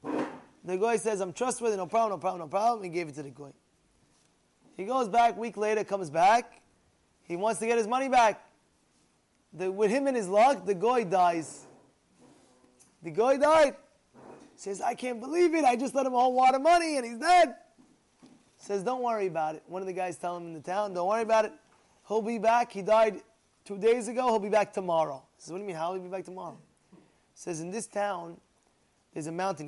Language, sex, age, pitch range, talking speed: English, male, 20-39, 180-230 Hz, 225 wpm